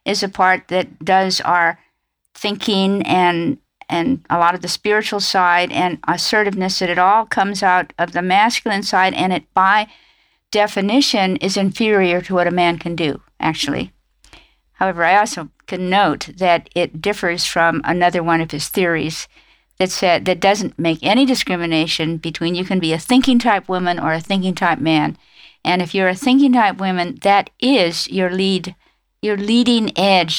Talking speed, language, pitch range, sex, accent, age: 170 wpm, English, 175-210 Hz, female, American, 50-69